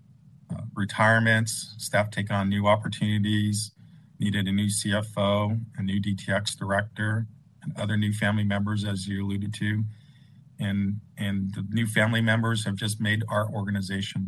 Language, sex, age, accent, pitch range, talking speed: English, male, 50-69, American, 105-130 Hz, 145 wpm